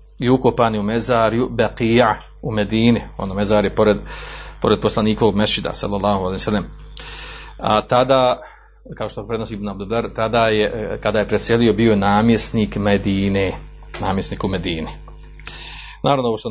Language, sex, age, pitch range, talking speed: Croatian, male, 40-59, 105-120 Hz, 130 wpm